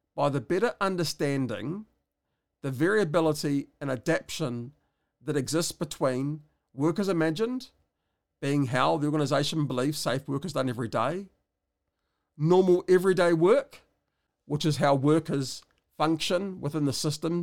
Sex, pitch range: male, 135-175 Hz